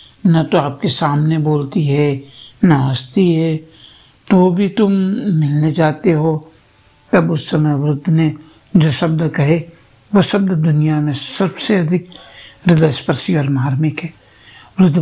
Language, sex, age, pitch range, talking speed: Hindi, male, 60-79, 145-180 Hz, 140 wpm